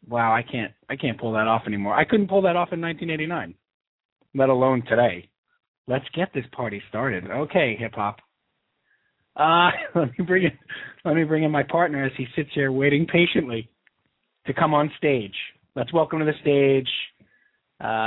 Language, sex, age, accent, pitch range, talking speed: English, male, 30-49, American, 125-180 Hz, 190 wpm